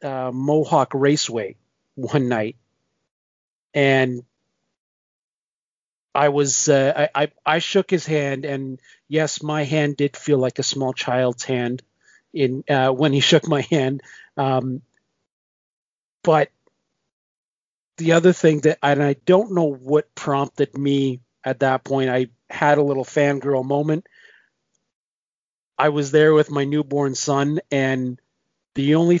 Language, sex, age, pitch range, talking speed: English, male, 40-59, 140-165 Hz, 135 wpm